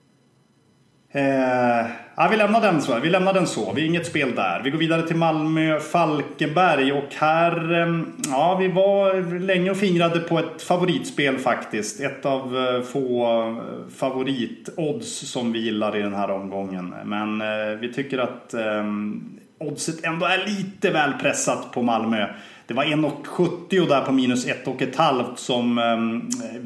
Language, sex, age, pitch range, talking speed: English, male, 30-49, 110-165 Hz, 165 wpm